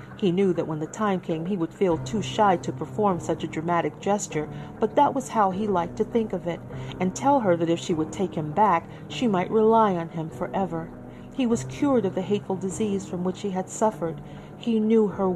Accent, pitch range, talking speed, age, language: American, 170-220 Hz, 230 wpm, 40-59, English